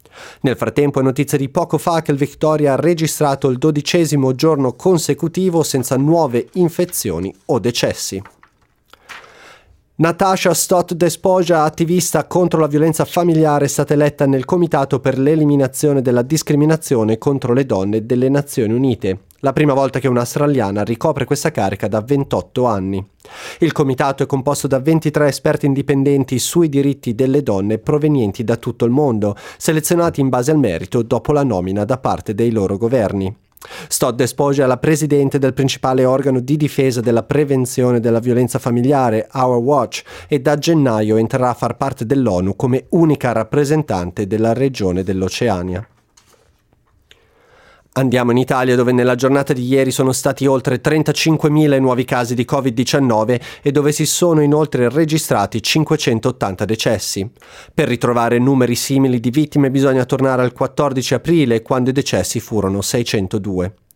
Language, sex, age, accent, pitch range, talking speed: Italian, male, 30-49, native, 120-150 Hz, 145 wpm